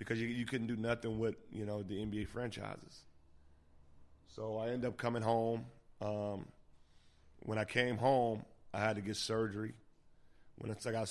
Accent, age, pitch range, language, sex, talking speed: American, 30-49, 105-120 Hz, English, male, 180 wpm